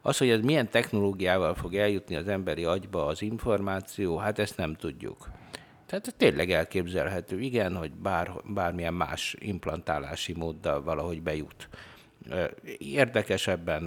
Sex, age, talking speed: male, 60-79, 125 wpm